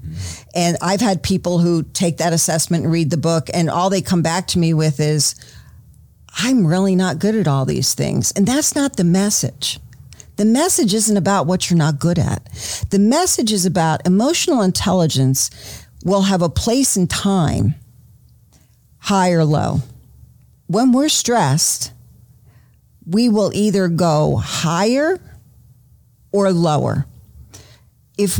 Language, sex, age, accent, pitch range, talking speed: English, female, 50-69, American, 135-185 Hz, 145 wpm